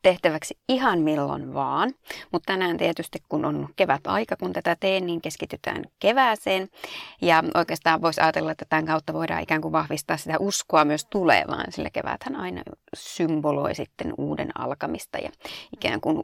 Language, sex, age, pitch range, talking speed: Finnish, female, 30-49, 155-210 Hz, 155 wpm